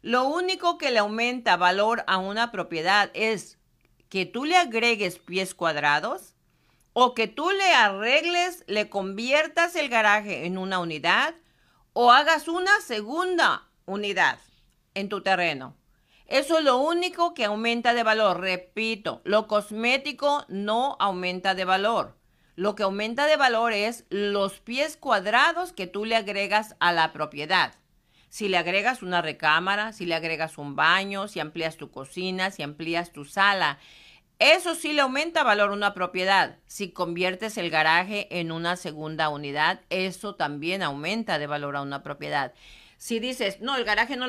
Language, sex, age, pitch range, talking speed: Spanish, female, 50-69, 180-245 Hz, 155 wpm